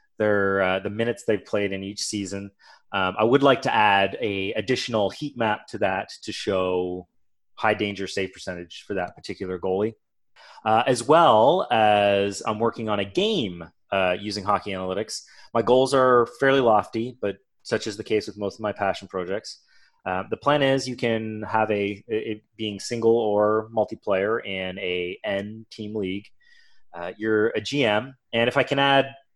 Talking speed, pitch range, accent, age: 180 wpm, 95-115 Hz, American, 30-49